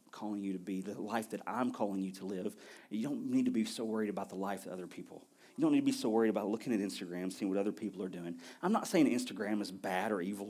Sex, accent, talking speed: male, American, 285 wpm